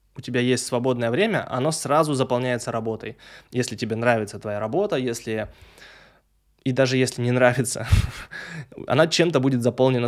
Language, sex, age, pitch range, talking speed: Russian, male, 20-39, 115-140 Hz, 145 wpm